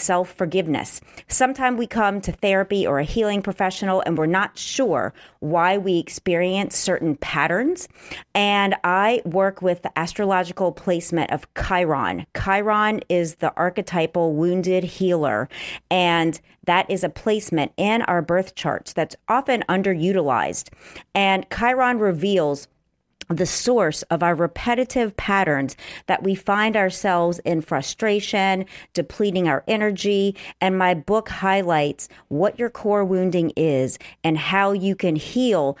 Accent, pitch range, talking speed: American, 170-210 Hz, 130 wpm